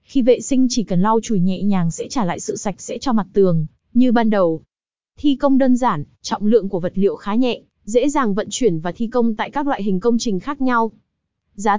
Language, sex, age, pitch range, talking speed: Vietnamese, female, 20-39, 200-255 Hz, 245 wpm